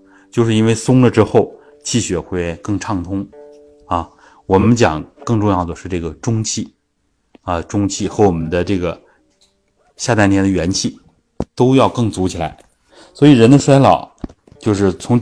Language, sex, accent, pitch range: Chinese, male, native, 90-120 Hz